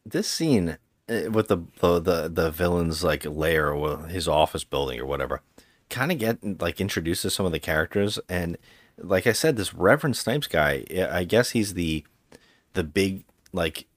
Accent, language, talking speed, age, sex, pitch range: American, English, 170 wpm, 30-49, male, 80-115 Hz